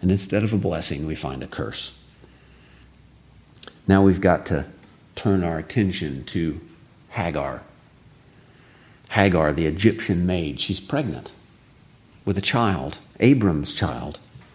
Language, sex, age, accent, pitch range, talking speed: English, male, 50-69, American, 90-120 Hz, 120 wpm